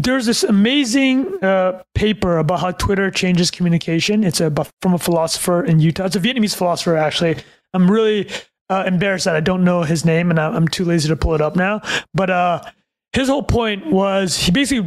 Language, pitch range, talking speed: English, 170-210 Hz, 195 wpm